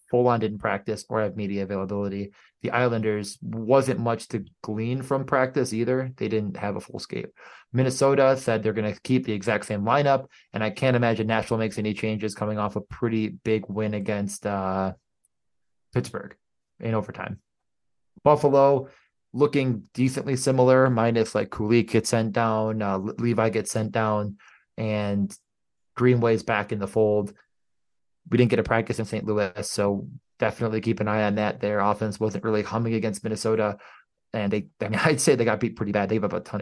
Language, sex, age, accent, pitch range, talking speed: English, male, 20-39, American, 105-120 Hz, 180 wpm